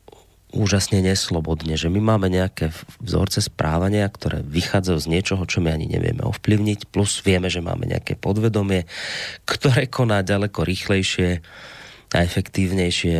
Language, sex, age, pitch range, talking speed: Slovak, male, 30-49, 85-120 Hz, 130 wpm